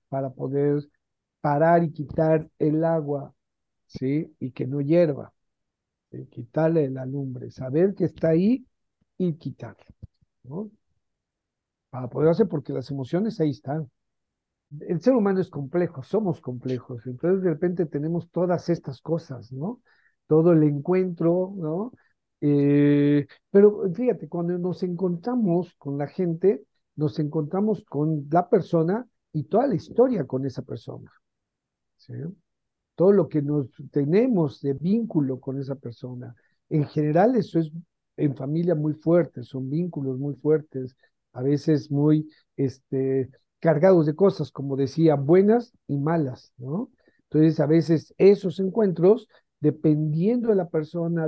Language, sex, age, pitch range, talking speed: Spanish, male, 50-69, 140-175 Hz, 135 wpm